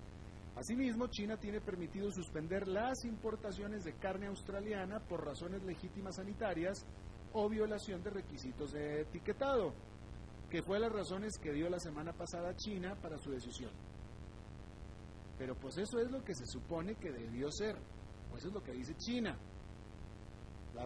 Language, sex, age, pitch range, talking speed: Spanish, male, 40-59, 125-200 Hz, 150 wpm